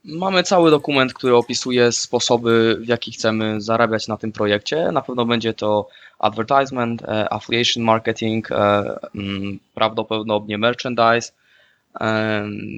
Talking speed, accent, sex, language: 120 wpm, native, male, Polish